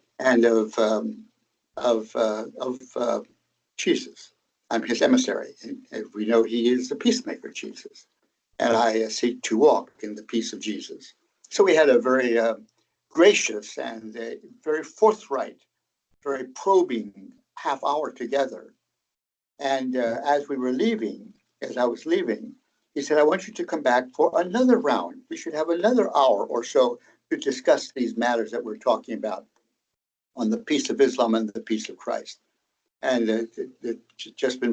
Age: 60-79